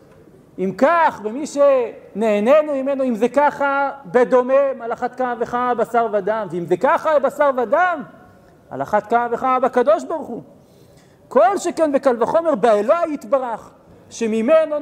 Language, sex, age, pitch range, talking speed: Hebrew, male, 50-69, 230-300 Hz, 130 wpm